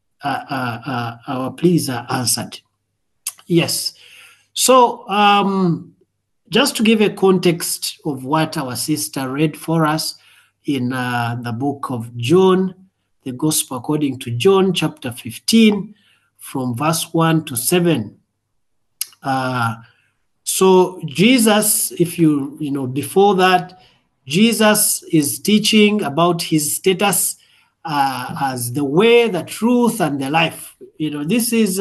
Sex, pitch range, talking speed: male, 150-200 Hz, 130 wpm